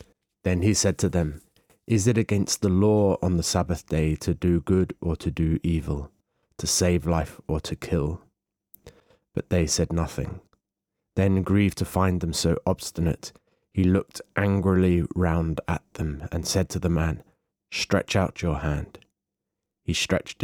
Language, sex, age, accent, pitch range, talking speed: English, male, 30-49, British, 80-100 Hz, 160 wpm